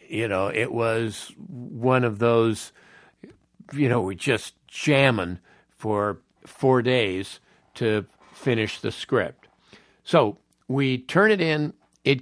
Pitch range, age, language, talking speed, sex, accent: 110-150 Hz, 60-79, English, 125 wpm, male, American